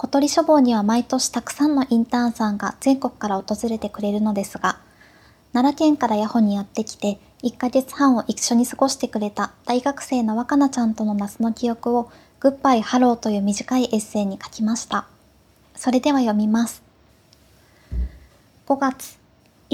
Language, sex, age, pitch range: Japanese, male, 20-39, 220-265 Hz